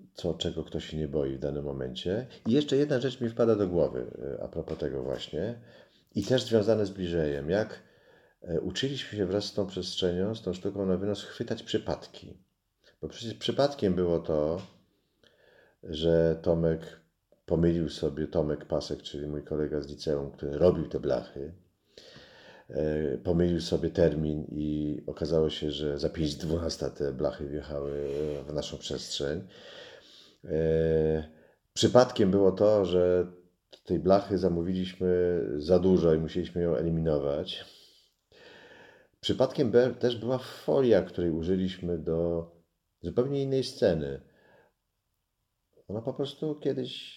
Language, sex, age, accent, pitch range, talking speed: Polish, male, 40-59, native, 80-95 Hz, 130 wpm